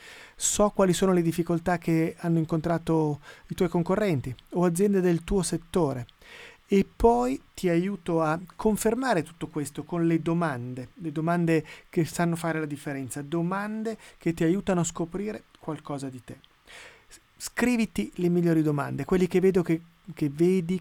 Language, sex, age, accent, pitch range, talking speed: Italian, male, 30-49, native, 155-190 Hz, 145 wpm